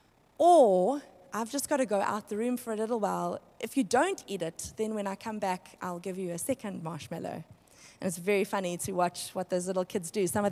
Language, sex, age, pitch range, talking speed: English, female, 20-39, 180-230 Hz, 240 wpm